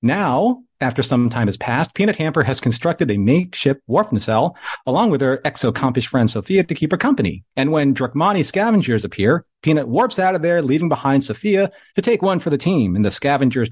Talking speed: 200 wpm